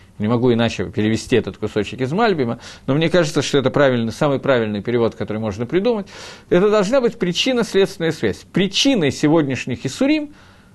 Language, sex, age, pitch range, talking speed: Russian, male, 50-69, 135-210 Hz, 140 wpm